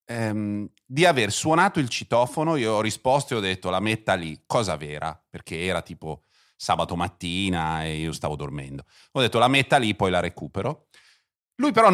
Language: Italian